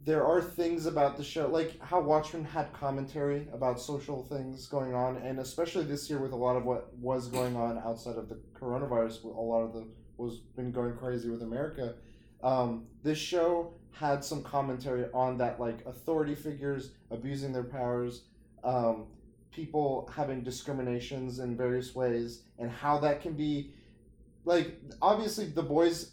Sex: male